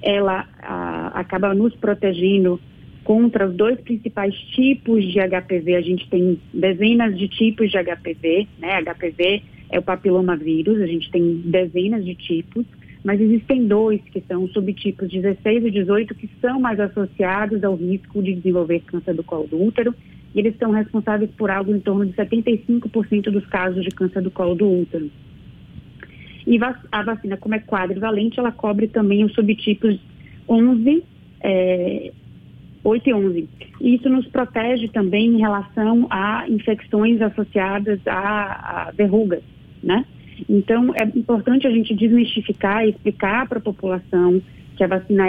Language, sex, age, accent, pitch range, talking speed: Portuguese, female, 30-49, Brazilian, 185-220 Hz, 150 wpm